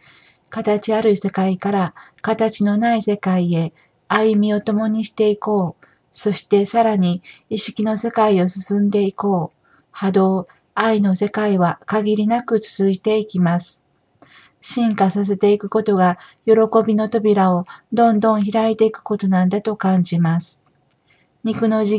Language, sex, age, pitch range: Japanese, female, 40-59, 180-215 Hz